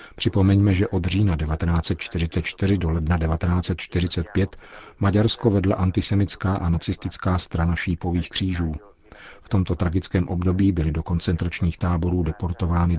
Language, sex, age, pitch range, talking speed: Czech, male, 50-69, 85-95 Hz, 115 wpm